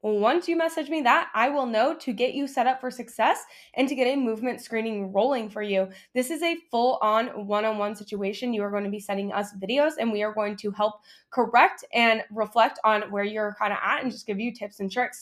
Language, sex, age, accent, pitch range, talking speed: English, female, 10-29, American, 220-285 Hz, 235 wpm